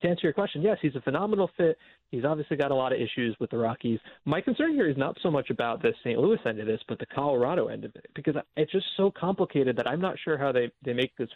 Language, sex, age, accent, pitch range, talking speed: English, male, 30-49, American, 120-145 Hz, 280 wpm